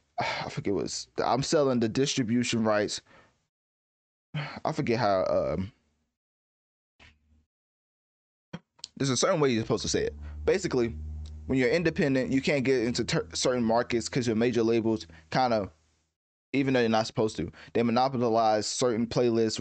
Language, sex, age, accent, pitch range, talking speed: English, male, 20-39, American, 105-130 Hz, 145 wpm